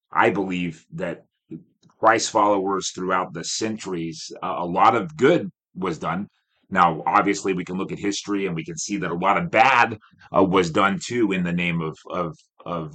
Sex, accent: male, American